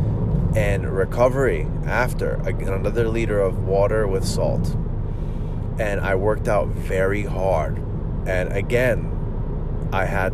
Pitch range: 95-115 Hz